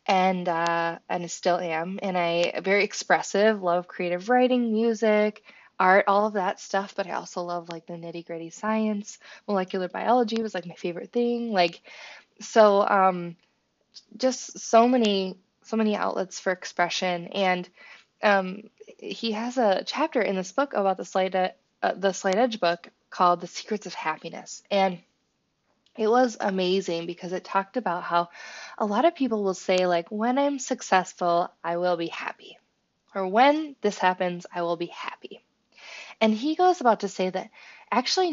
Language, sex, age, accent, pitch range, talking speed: English, female, 20-39, American, 180-225 Hz, 165 wpm